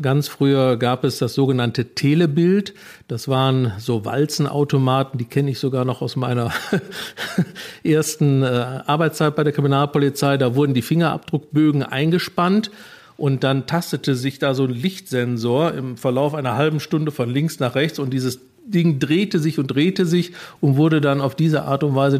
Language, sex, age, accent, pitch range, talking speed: German, male, 50-69, German, 130-155 Hz, 170 wpm